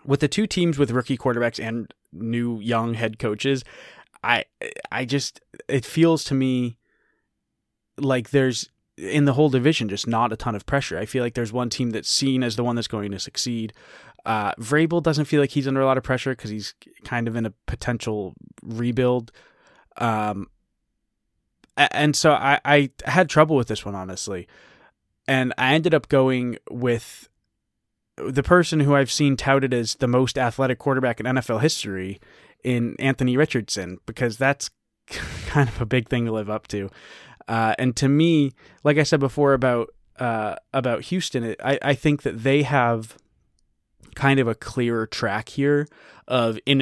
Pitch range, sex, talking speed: 115-140 Hz, male, 175 wpm